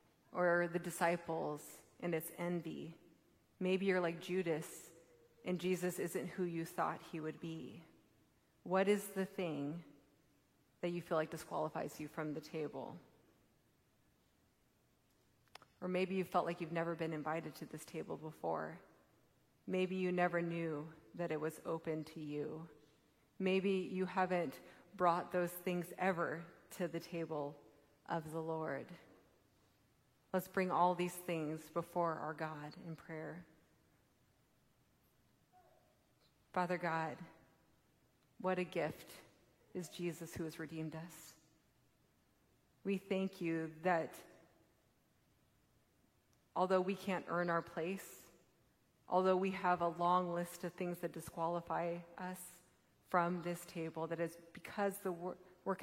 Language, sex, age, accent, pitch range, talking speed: English, female, 30-49, American, 160-180 Hz, 130 wpm